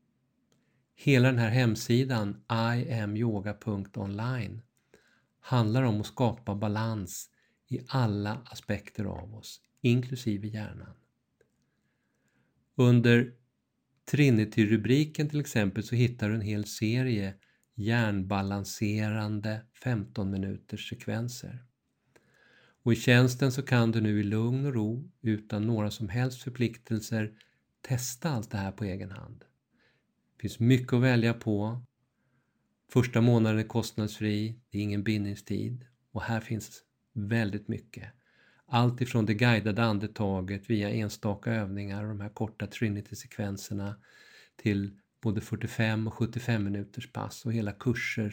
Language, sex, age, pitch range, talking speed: Swedish, male, 50-69, 105-120 Hz, 115 wpm